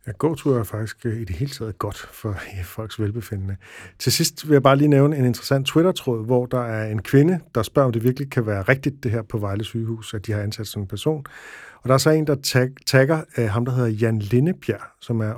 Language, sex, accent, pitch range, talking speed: Danish, male, native, 110-140 Hz, 245 wpm